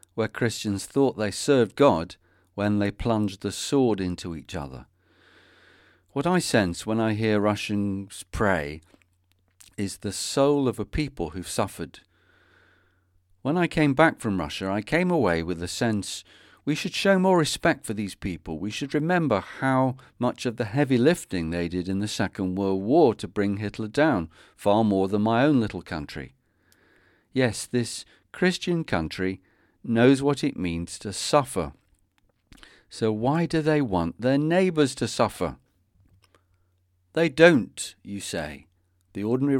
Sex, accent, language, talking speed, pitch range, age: male, British, English, 155 wpm, 90-130 Hz, 50-69